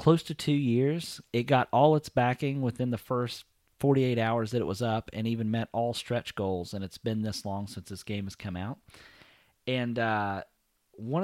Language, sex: English, male